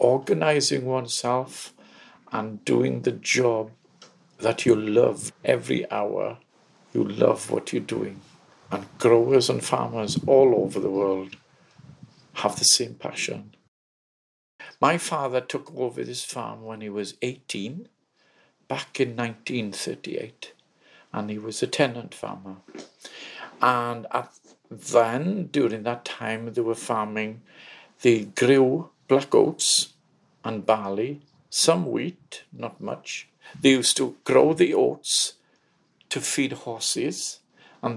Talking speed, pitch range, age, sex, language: 120 wpm, 115-145 Hz, 50-69, male, English